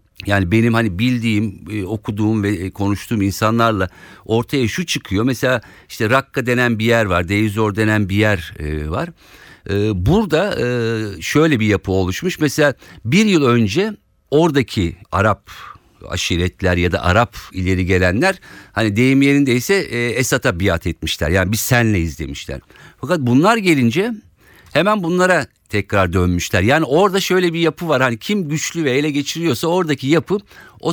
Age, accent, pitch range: 50-69, native, 95-140 Hz